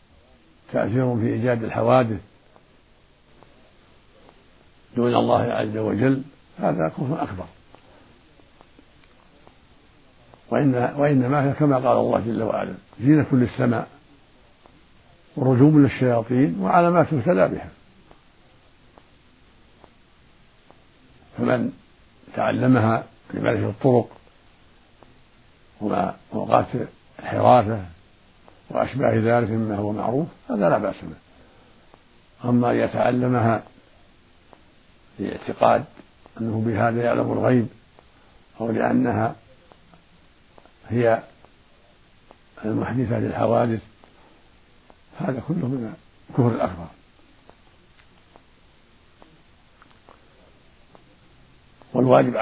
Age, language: 60-79, Arabic